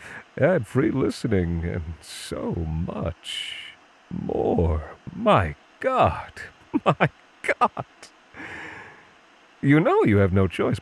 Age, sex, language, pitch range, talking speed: 40-59, male, English, 85-125 Hz, 95 wpm